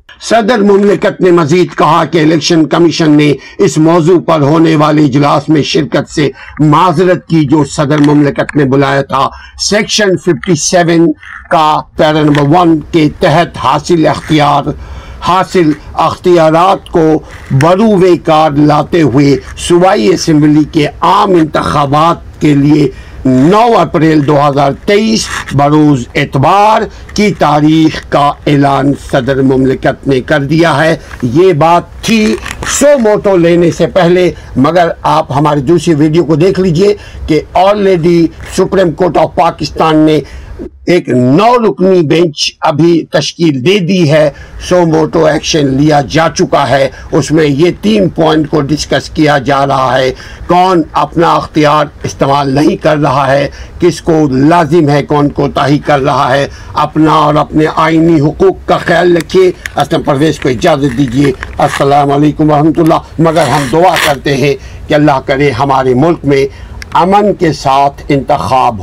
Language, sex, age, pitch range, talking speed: Urdu, male, 60-79, 145-175 Hz, 145 wpm